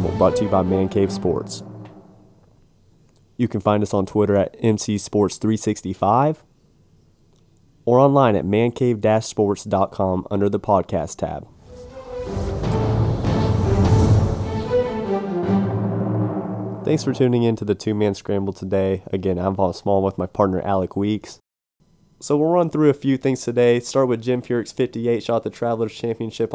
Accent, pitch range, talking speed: American, 105-125 Hz, 135 wpm